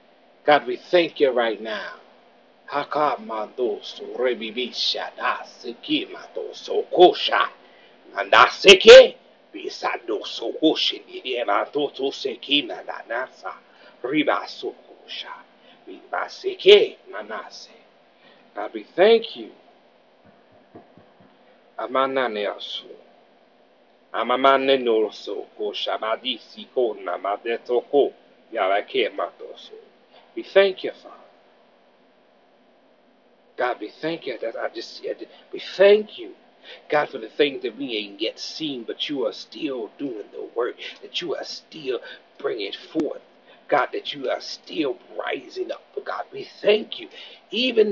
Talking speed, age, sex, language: 115 wpm, 60-79, male, English